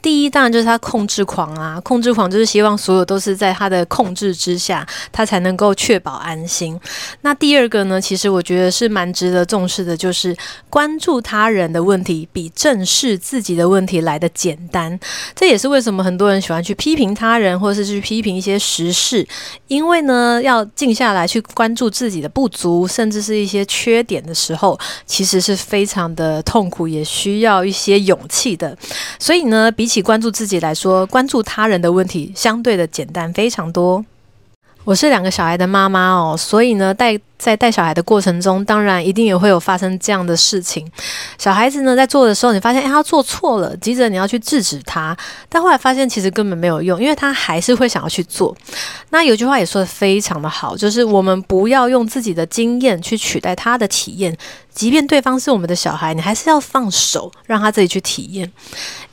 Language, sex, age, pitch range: Chinese, female, 30-49, 180-235 Hz